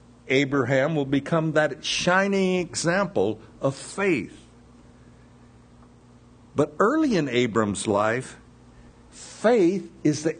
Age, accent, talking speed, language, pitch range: 60-79, American, 90 wpm, English, 115-170 Hz